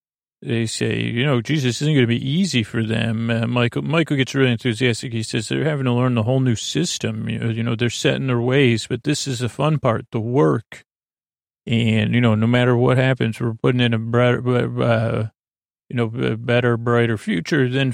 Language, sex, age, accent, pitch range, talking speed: English, male, 30-49, American, 115-125 Hz, 215 wpm